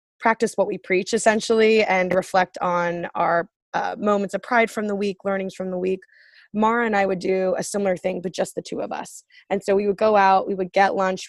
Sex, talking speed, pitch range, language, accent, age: female, 235 wpm, 185-215 Hz, English, American, 20-39